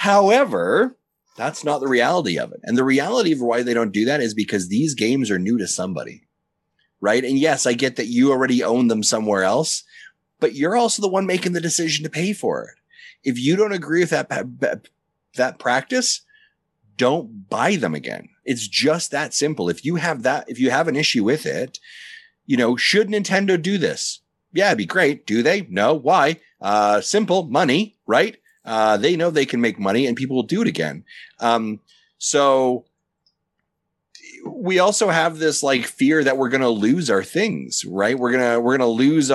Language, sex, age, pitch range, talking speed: English, male, 30-49, 120-185 Hz, 195 wpm